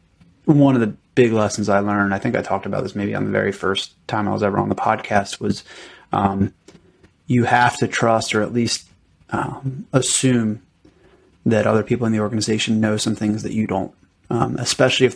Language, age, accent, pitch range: English, 30-49, American, 100-115 Hz